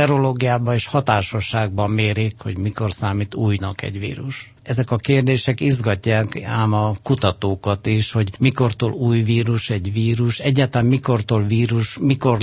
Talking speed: 135 wpm